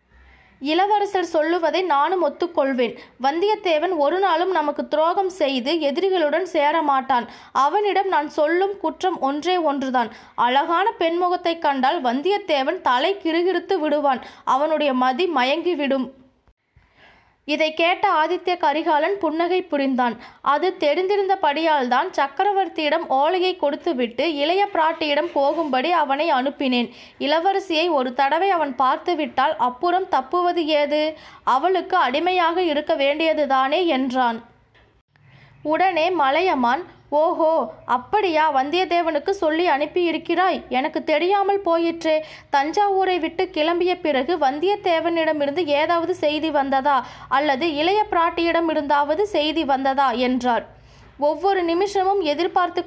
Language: Tamil